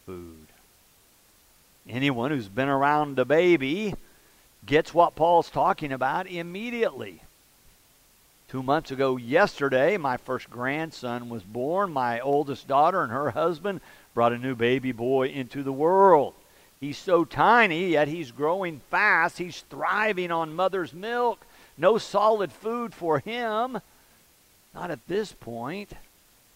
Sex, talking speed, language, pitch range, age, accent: male, 125 wpm, English, 135-205 Hz, 50-69, American